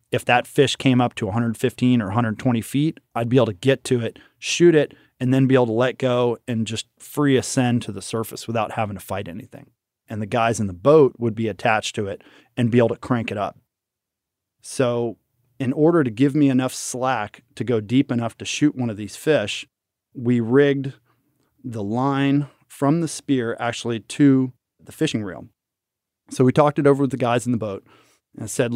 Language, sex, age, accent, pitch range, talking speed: English, male, 30-49, American, 115-135 Hz, 205 wpm